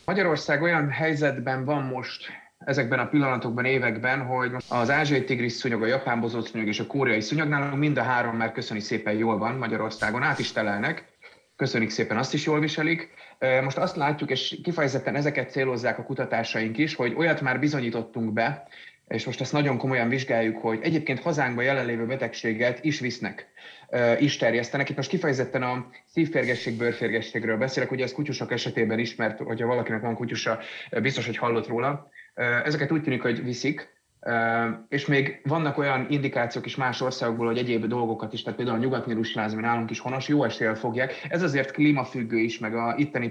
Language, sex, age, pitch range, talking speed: Hungarian, male, 30-49, 115-140 Hz, 170 wpm